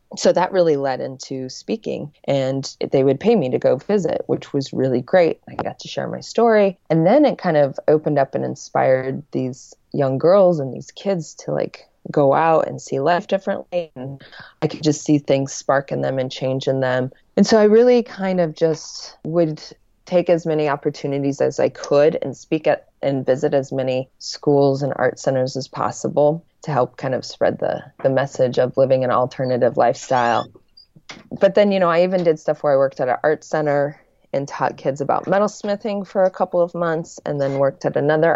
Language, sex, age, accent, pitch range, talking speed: English, female, 20-39, American, 135-175 Hz, 205 wpm